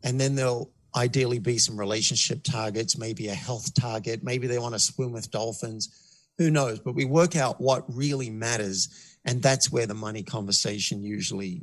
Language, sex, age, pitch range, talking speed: English, male, 50-69, 120-150 Hz, 180 wpm